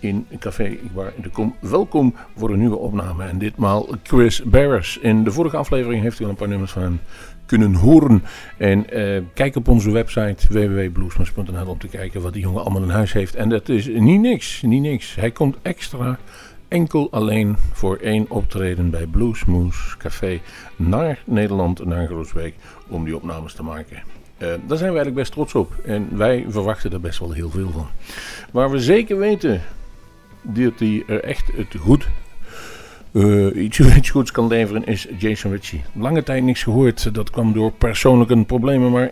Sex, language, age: male, Dutch, 50-69